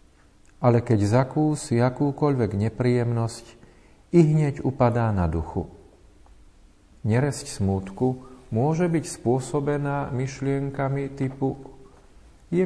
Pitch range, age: 95-130 Hz, 40-59